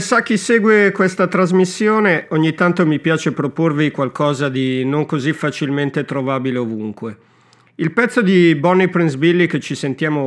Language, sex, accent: Italian, male, native